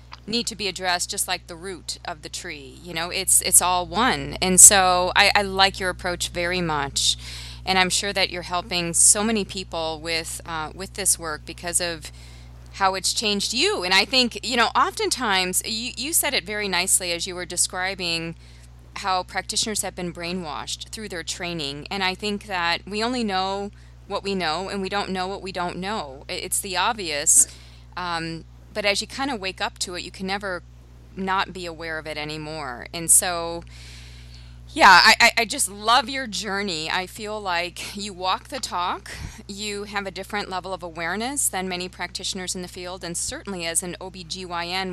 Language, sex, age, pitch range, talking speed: English, female, 20-39, 165-200 Hz, 190 wpm